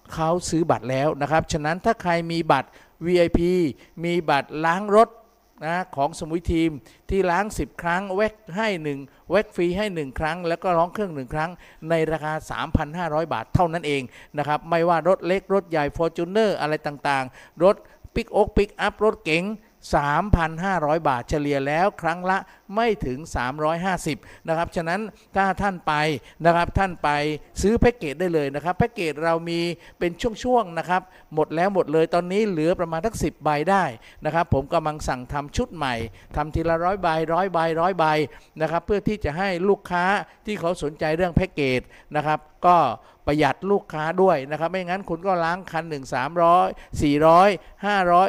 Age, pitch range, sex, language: 50-69, 155-200 Hz, male, Thai